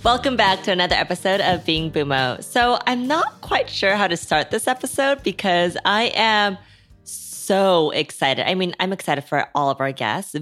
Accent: American